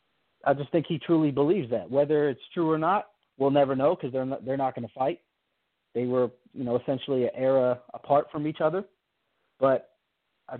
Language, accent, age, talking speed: English, American, 30-49, 205 wpm